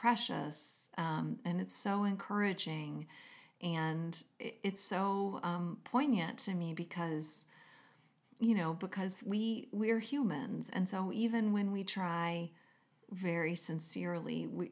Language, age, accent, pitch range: English, 40-59, American, 160-205 Hz